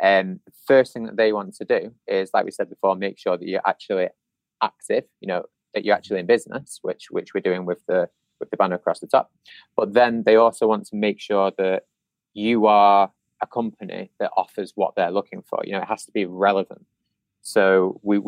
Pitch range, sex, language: 95-110 Hz, male, English